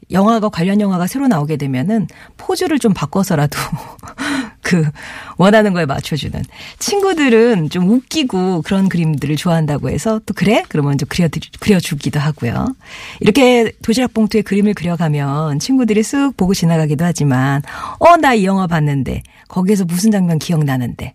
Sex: female